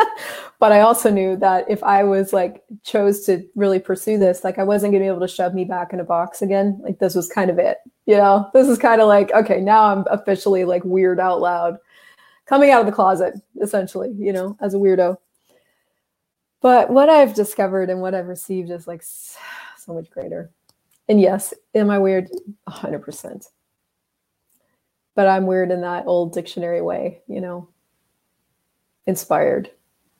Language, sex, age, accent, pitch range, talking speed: English, female, 30-49, American, 180-210 Hz, 180 wpm